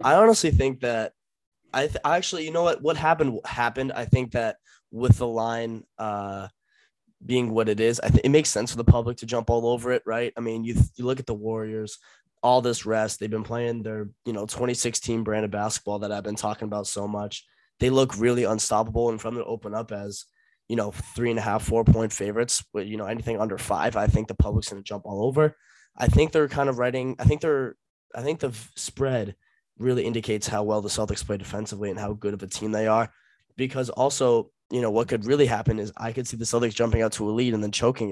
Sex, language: male, English